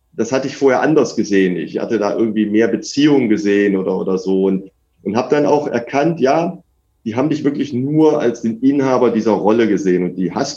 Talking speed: 210 wpm